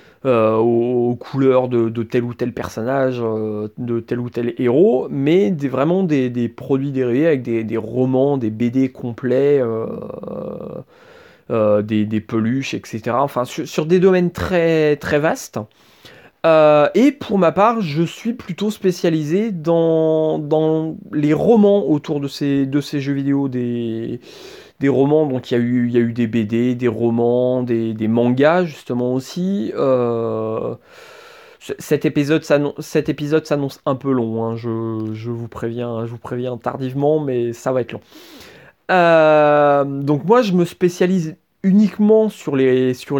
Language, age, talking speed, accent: French, 30-49, 160 wpm, French